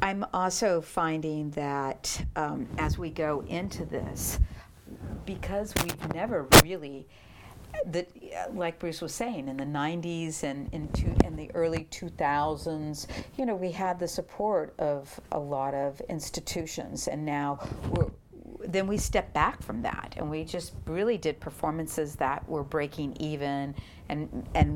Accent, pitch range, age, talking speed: American, 155-210 Hz, 50-69, 145 wpm